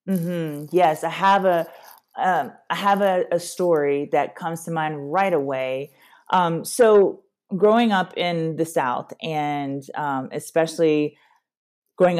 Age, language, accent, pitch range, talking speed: 30-49, English, American, 135-170 Hz, 145 wpm